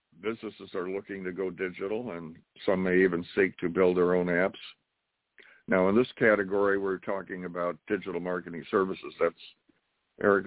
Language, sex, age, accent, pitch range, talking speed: English, male, 60-79, American, 90-110 Hz, 155 wpm